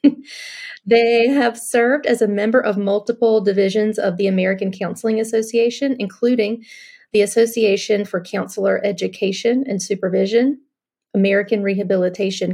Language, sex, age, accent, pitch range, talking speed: English, female, 30-49, American, 200-235 Hz, 115 wpm